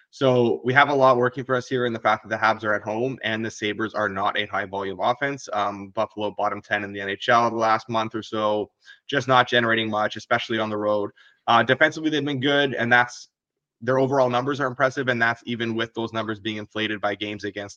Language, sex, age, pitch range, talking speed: English, male, 20-39, 105-125 Hz, 235 wpm